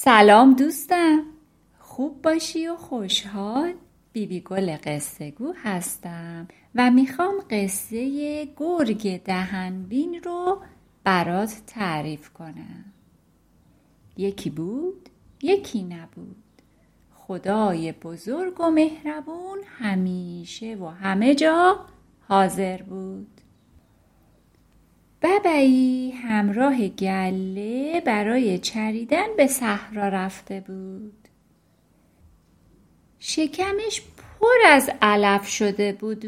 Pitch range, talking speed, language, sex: 195-310 Hz, 85 wpm, Persian, female